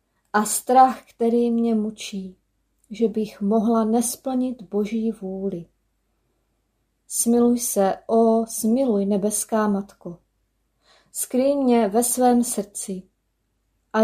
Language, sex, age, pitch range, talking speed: Czech, female, 30-49, 200-245 Hz, 100 wpm